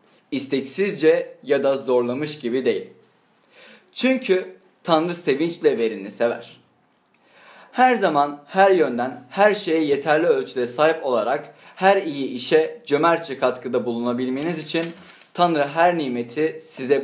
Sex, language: male, Turkish